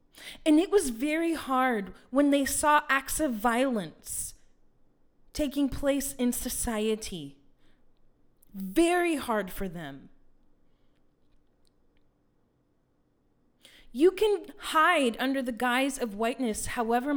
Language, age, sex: English, 30-49, female